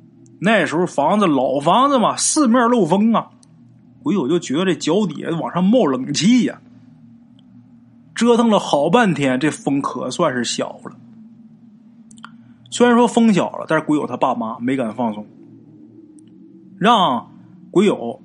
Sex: male